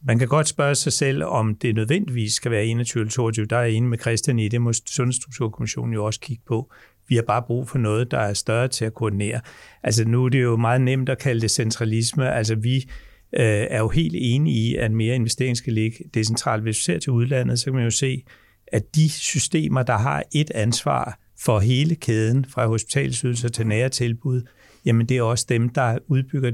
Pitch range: 115-135 Hz